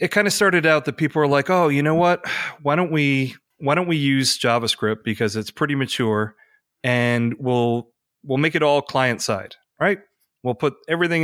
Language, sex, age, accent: English, male, 30-49, American